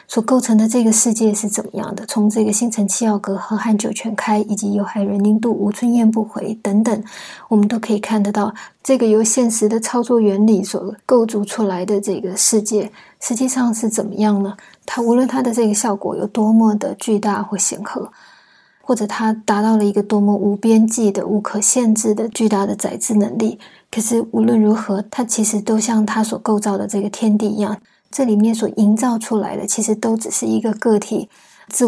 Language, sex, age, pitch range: Chinese, female, 20-39, 205-225 Hz